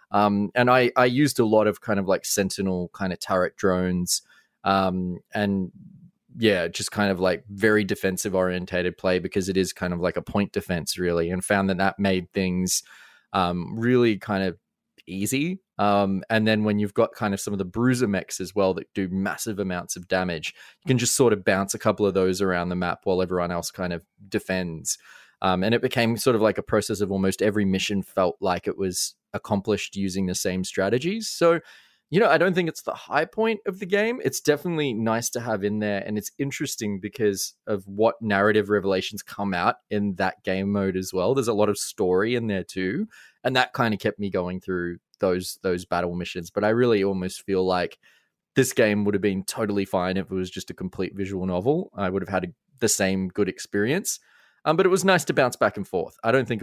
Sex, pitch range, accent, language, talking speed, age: male, 95-110 Hz, Australian, English, 220 wpm, 20-39